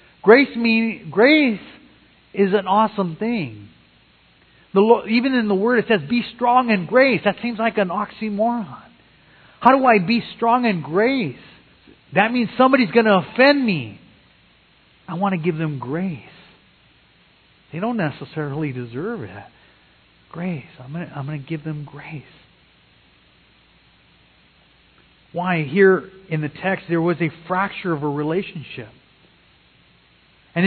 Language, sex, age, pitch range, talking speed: English, male, 40-59, 160-220 Hz, 140 wpm